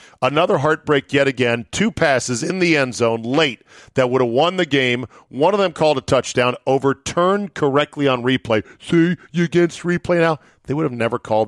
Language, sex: English, male